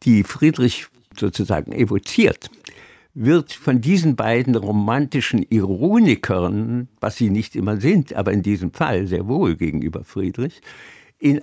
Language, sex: German, male